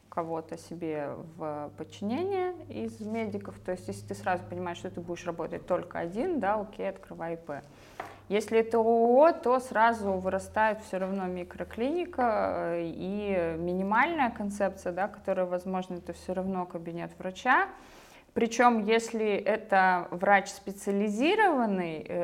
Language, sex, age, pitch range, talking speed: Russian, female, 20-39, 165-200 Hz, 125 wpm